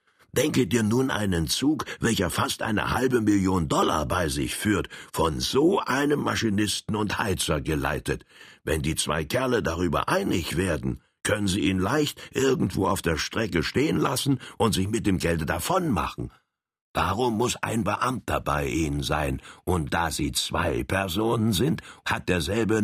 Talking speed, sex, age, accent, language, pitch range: 160 wpm, male, 60-79, German, German, 80-110 Hz